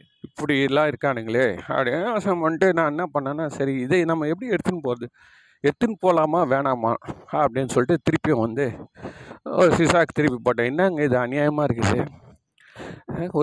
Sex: male